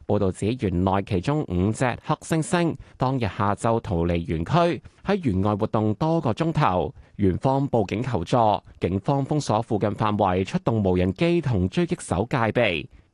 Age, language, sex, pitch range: 20-39, Chinese, male, 100-150 Hz